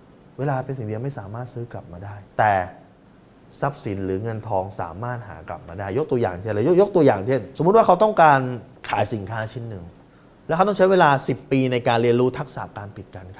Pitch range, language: 110-150 Hz, Thai